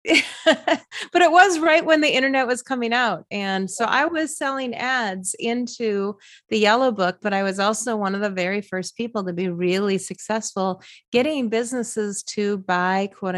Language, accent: English, American